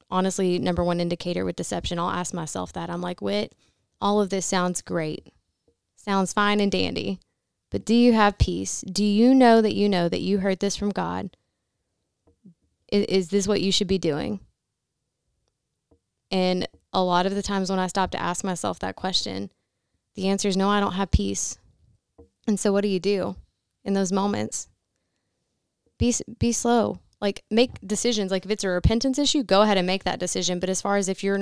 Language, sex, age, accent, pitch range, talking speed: English, female, 20-39, American, 175-205 Hz, 195 wpm